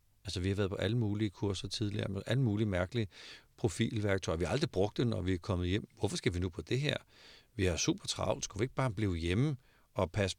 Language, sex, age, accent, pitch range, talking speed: Danish, male, 50-69, native, 95-120 Hz, 250 wpm